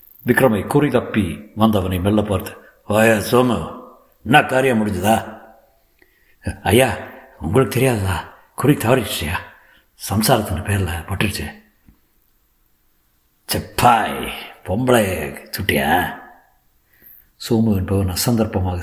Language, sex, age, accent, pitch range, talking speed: Tamil, male, 60-79, native, 95-120 Hz, 85 wpm